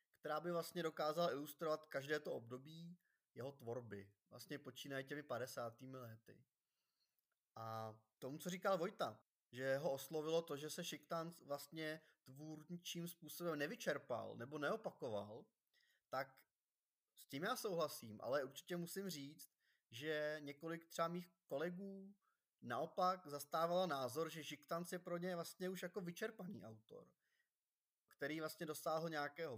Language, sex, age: Czech, male, 20-39